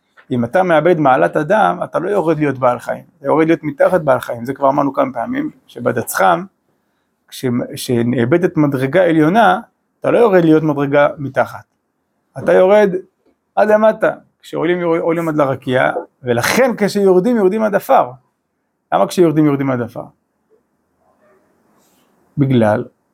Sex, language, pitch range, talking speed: male, Hebrew, 145-210 Hz, 130 wpm